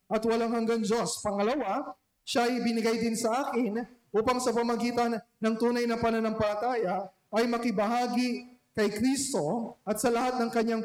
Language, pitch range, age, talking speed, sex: Filipino, 225-255 Hz, 20-39, 150 wpm, male